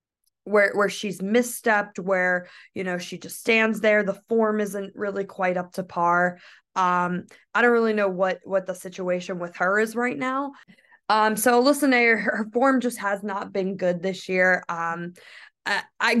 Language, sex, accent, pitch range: English, female, American, 185-220 Hz